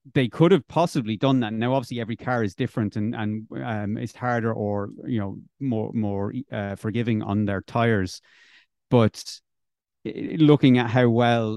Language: English